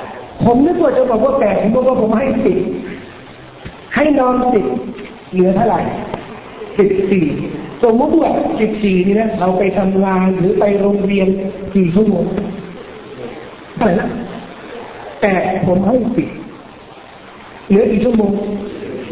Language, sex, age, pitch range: Thai, male, 60-79, 215-285 Hz